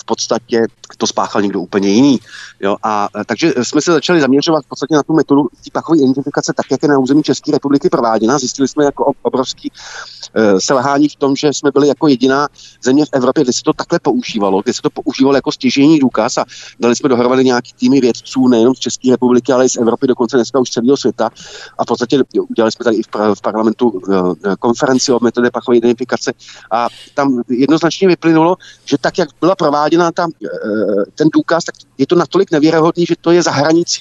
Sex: male